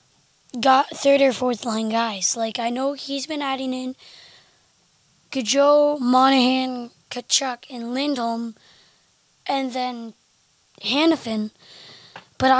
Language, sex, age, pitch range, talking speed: English, female, 20-39, 245-285 Hz, 105 wpm